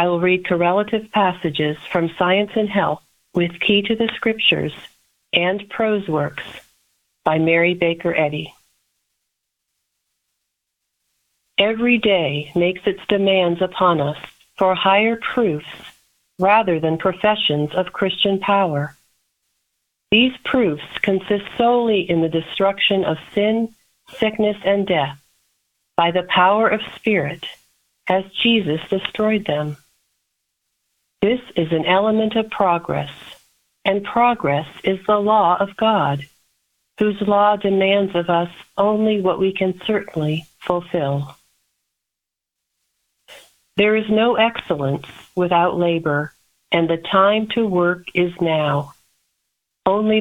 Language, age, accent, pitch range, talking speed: English, 50-69, American, 165-210 Hz, 115 wpm